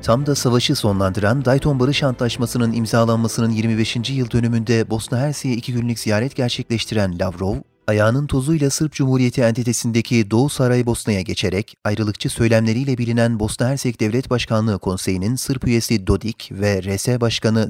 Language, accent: Turkish, native